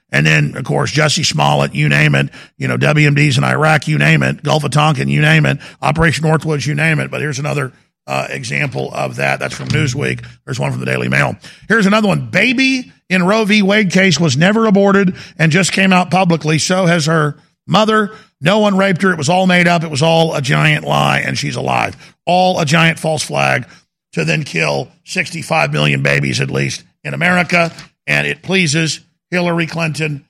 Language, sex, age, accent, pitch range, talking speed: English, male, 50-69, American, 155-190 Hz, 205 wpm